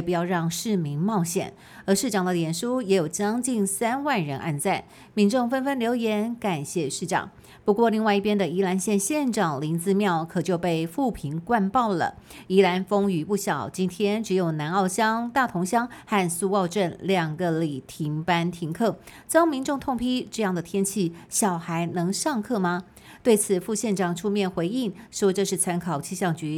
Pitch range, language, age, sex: 170-220 Hz, Chinese, 50-69, female